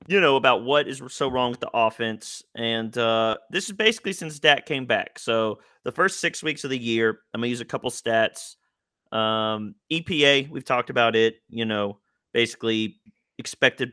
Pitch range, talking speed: 110-130 Hz, 190 wpm